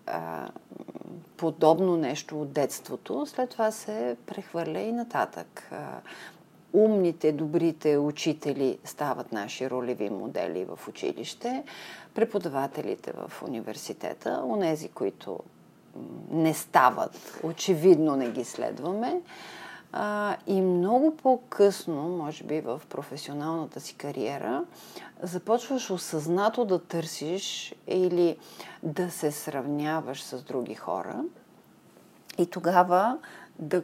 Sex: female